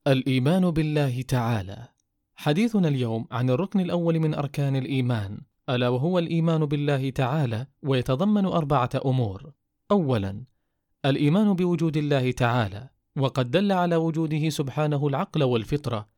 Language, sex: Arabic, male